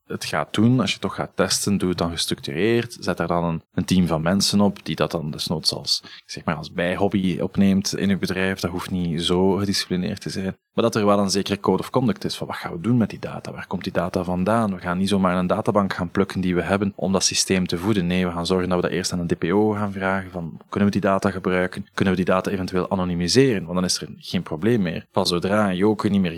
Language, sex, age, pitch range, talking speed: Dutch, male, 20-39, 90-105 Hz, 270 wpm